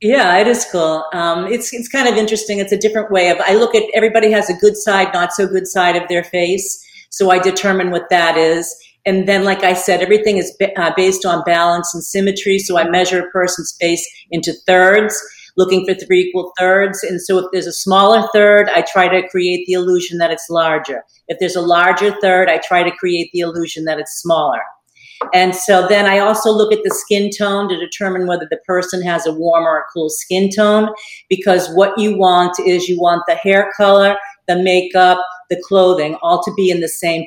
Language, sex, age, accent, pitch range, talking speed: English, female, 50-69, American, 170-195 Hz, 220 wpm